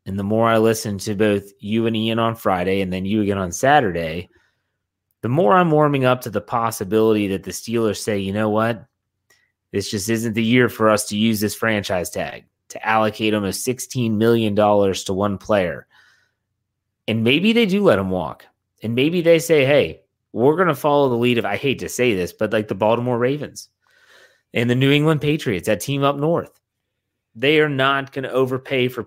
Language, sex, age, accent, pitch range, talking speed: English, male, 30-49, American, 105-125 Hz, 200 wpm